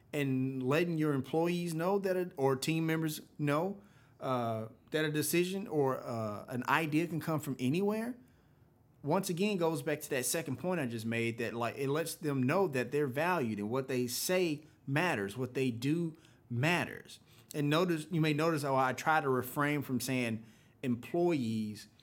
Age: 30-49